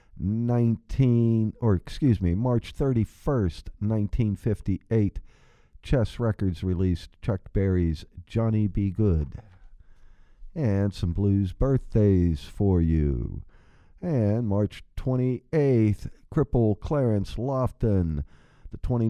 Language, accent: English, American